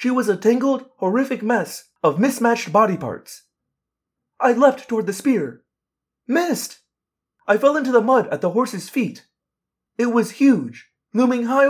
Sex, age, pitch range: male, 30-49, 205-265 Hz